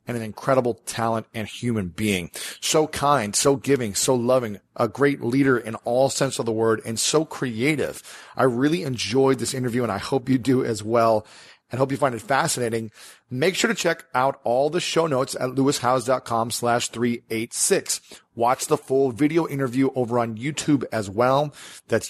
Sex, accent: male, American